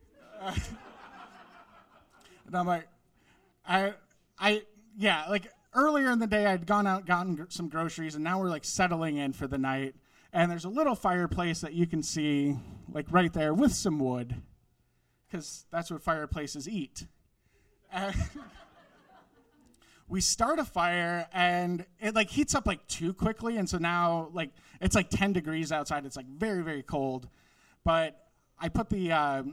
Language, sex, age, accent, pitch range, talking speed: English, male, 30-49, American, 145-195 Hz, 160 wpm